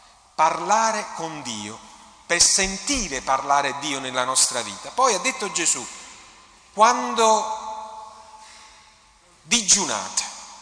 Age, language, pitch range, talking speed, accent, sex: 40-59, Italian, 145-225 Hz, 90 wpm, native, male